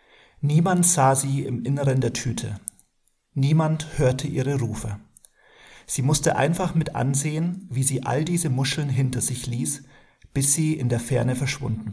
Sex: male